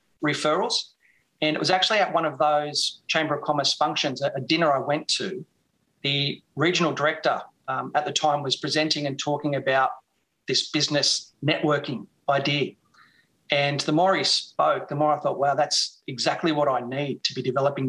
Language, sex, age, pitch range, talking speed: English, male, 40-59, 140-155 Hz, 175 wpm